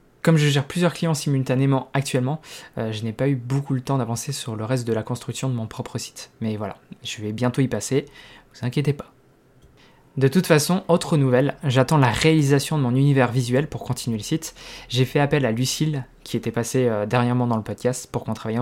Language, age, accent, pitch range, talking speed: French, 20-39, French, 120-145 Hz, 220 wpm